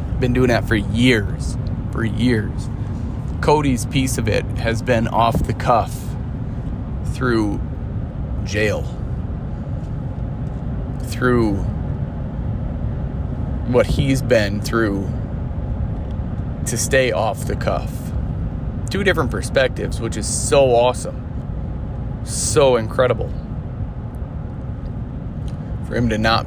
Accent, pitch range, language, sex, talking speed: American, 110-125 Hz, English, male, 95 wpm